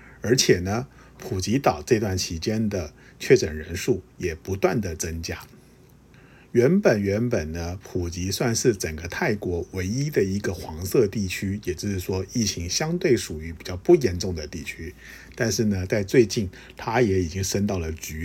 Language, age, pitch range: Chinese, 50-69, 90-125 Hz